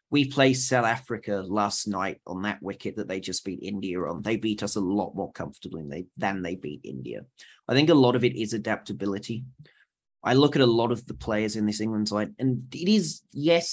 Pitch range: 100-135 Hz